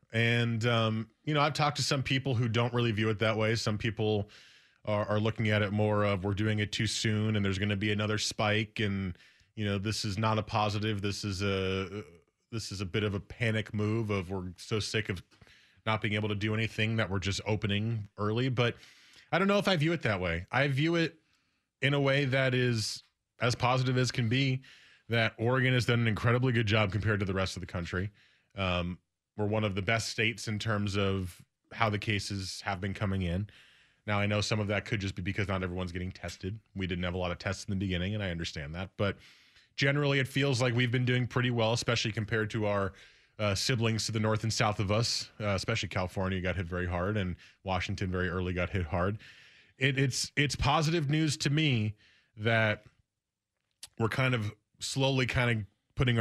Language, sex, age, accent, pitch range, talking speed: English, male, 20-39, American, 100-120 Hz, 220 wpm